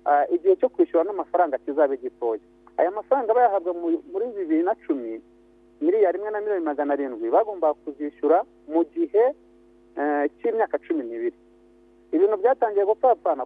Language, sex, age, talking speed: Indonesian, male, 50-69, 120 wpm